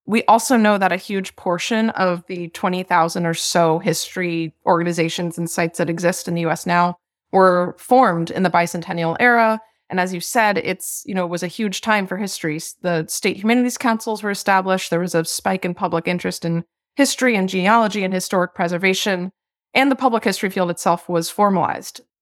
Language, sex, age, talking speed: English, female, 20-39, 190 wpm